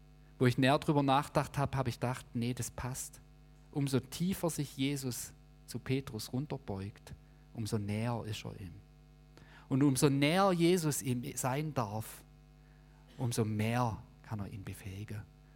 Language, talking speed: German, 145 wpm